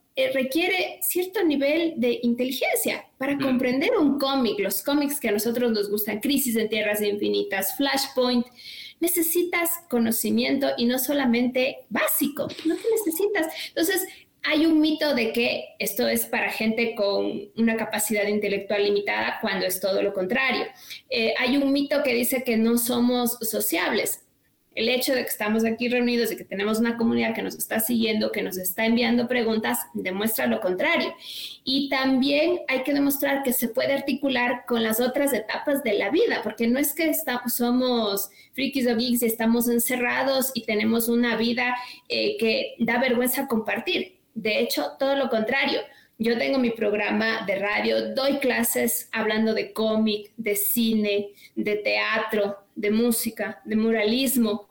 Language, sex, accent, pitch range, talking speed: Spanish, female, Mexican, 220-275 Hz, 160 wpm